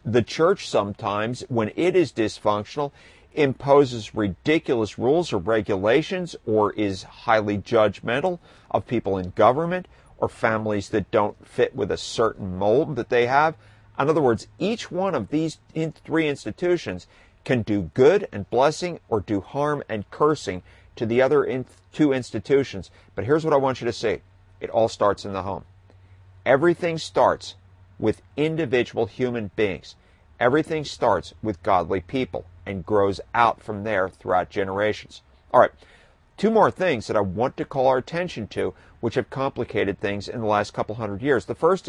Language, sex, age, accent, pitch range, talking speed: English, male, 50-69, American, 100-140 Hz, 160 wpm